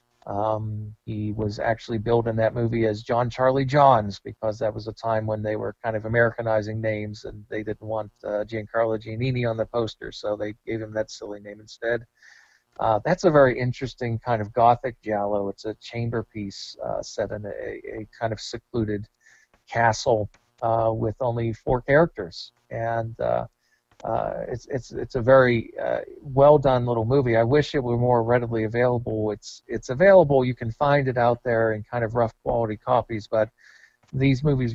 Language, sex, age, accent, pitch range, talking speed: Swedish, male, 40-59, American, 110-125 Hz, 185 wpm